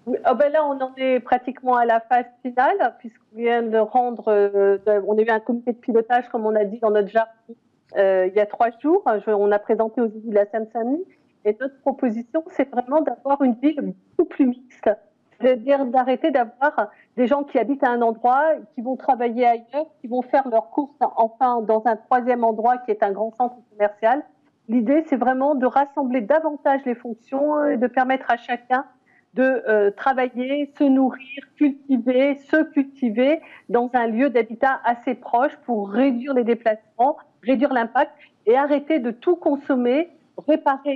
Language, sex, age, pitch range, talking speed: French, female, 50-69, 230-280 Hz, 185 wpm